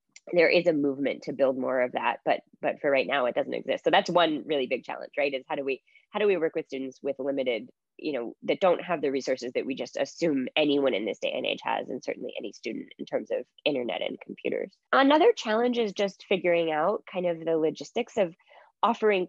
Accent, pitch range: American, 145-210 Hz